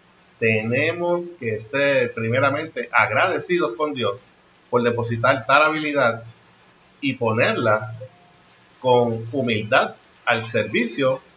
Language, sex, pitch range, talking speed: Spanish, male, 110-135 Hz, 90 wpm